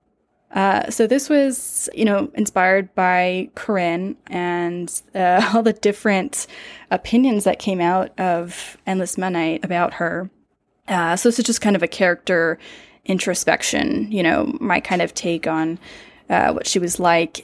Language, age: English, 10-29